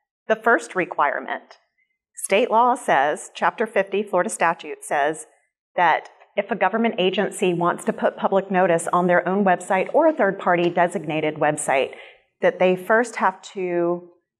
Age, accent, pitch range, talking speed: 40-59, American, 175-220 Hz, 150 wpm